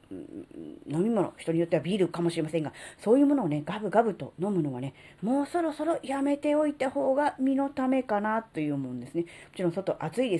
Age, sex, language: 40-59, female, Japanese